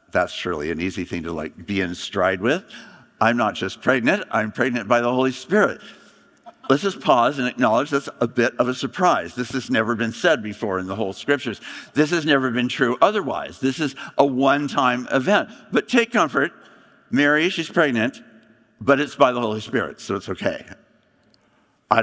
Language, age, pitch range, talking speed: English, 60-79, 105-140 Hz, 190 wpm